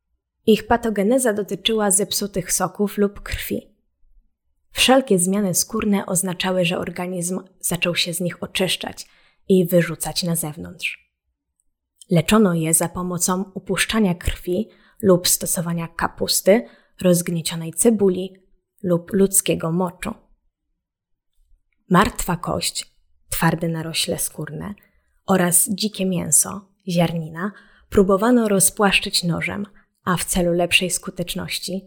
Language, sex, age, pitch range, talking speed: Polish, female, 20-39, 170-205 Hz, 100 wpm